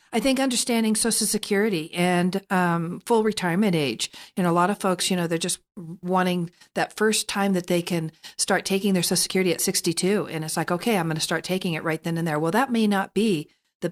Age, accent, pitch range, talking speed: 50-69, American, 165-195 Hz, 235 wpm